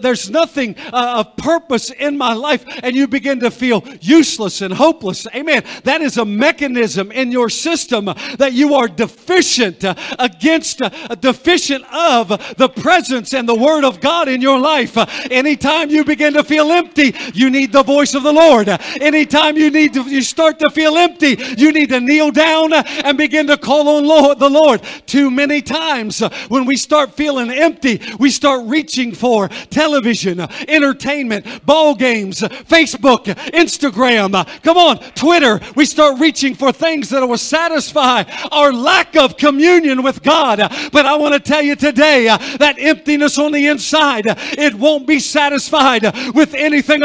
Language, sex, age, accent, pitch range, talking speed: English, male, 50-69, American, 250-305 Hz, 165 wpm